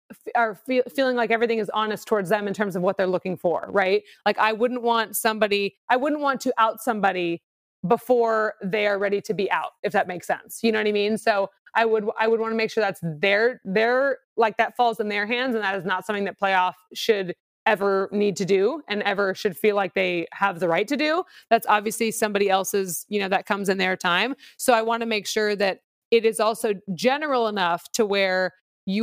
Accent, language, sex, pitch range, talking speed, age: American, English, female, 195-230 Hz, 225 wpm, 20-39